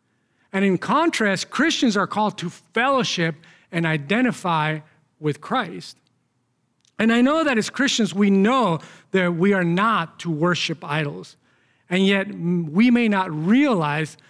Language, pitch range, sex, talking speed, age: English, 150-200 Hz, male, 140 wpm, 40-59